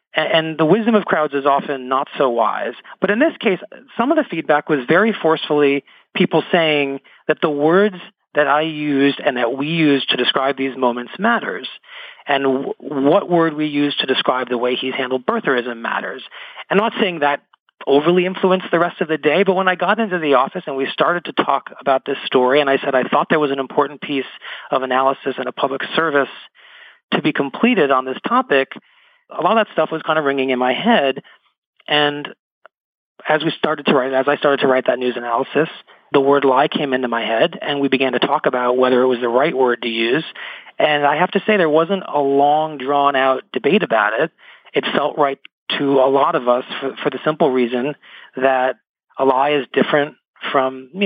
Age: 40-59